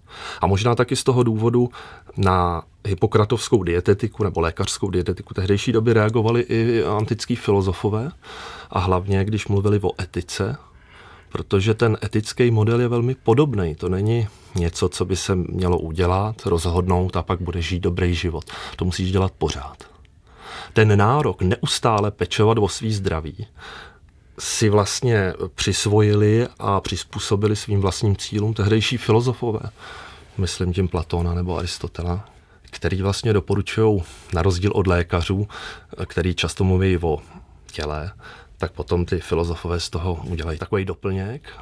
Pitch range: 90-110 Hz